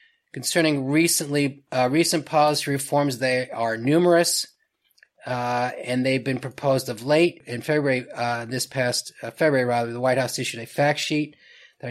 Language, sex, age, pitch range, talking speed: English, male, 30-49, 125-150 Hz, 160 wpm